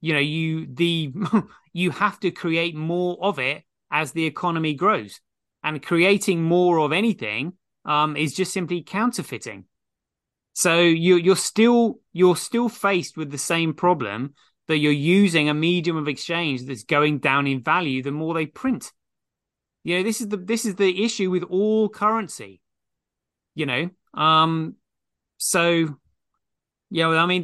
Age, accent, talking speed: 30-49, British, 160 wpm